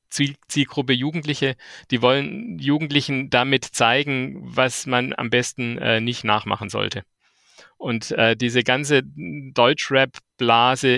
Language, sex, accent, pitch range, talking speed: German, male, German, 115-135 Hz, 110 wpm